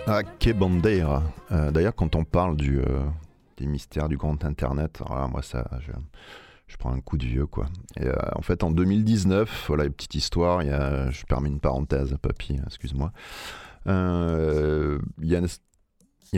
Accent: French